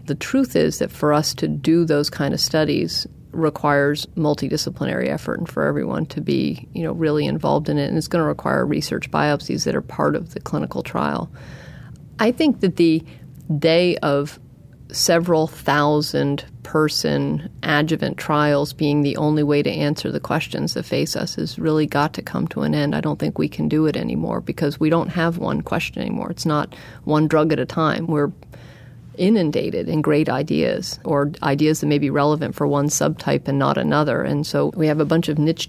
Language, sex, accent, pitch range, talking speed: English, female, American, 145-165 Hz, 195 wpm